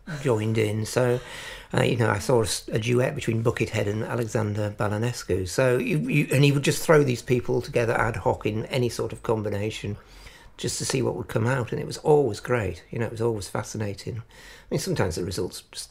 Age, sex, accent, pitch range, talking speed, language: 60-79, male, British, 105-120 Hz, 220 wpm, English